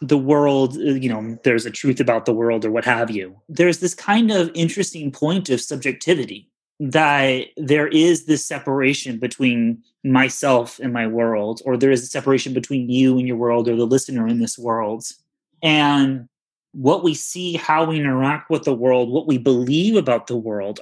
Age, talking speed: 30-49, 185 wpm